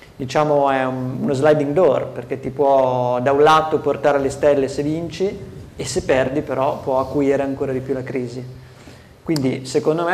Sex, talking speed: male, 185 wpm